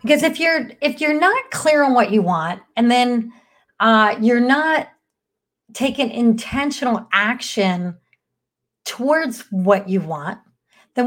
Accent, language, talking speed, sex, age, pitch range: American, English, 130 wpm, female, 40-59, 210-275 Hz